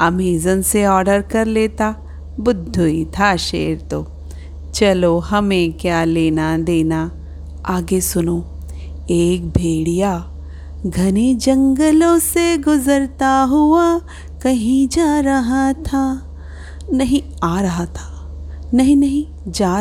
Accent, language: native, Hindi